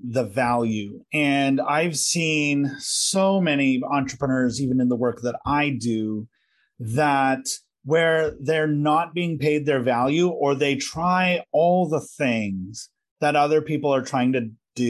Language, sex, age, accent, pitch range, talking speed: English, male, 30-49, American, 125-165 Hz, 145 wpm